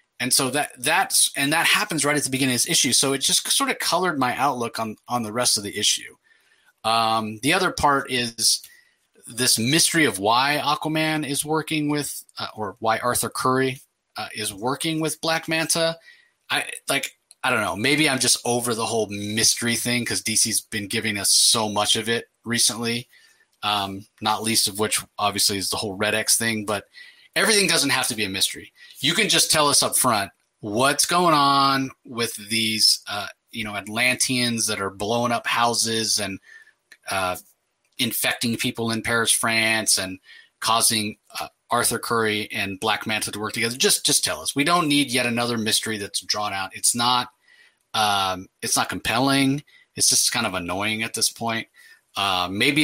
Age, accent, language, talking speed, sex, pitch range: 30-49, American, English, 185 wpm, male, 110-145 Hz